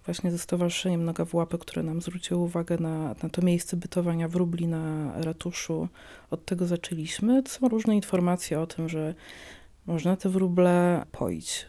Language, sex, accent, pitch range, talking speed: Polish, female, native, 170-180 Hz, 155 wpm